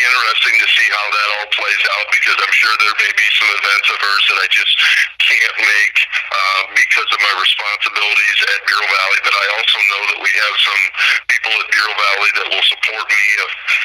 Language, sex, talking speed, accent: English, male, 205 wpm, American